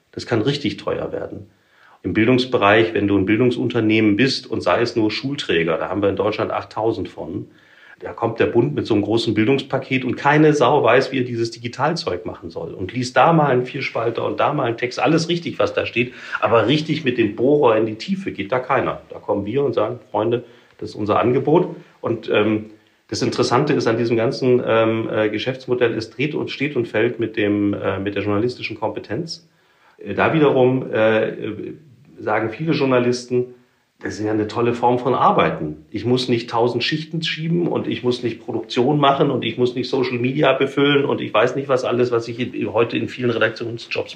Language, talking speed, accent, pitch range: German, 200 wpm, German, 110-135 Hz